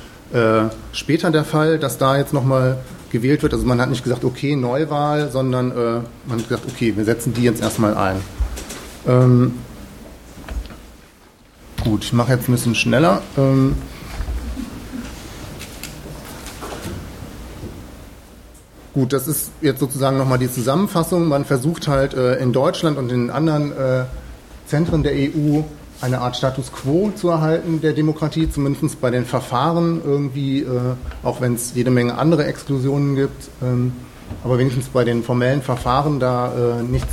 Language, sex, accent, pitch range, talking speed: German, male, German, 120-140 Hz, 140 wpm